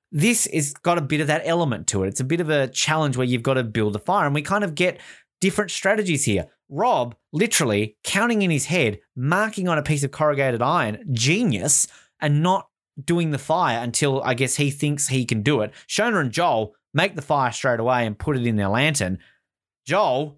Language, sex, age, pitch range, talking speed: English, male, 20-39, 115-160 Hz, 220 wpm